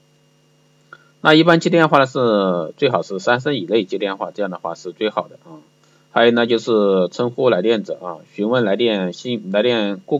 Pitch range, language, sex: 95-125 Hz, Chinese, male